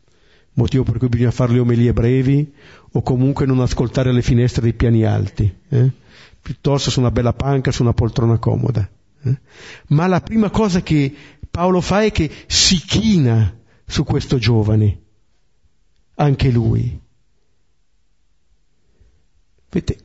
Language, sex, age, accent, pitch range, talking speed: Italian, male, 50-69, native, 100-145 Hz, 135 wpm